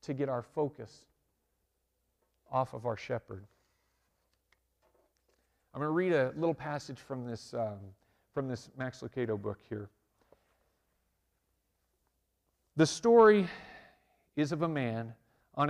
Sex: male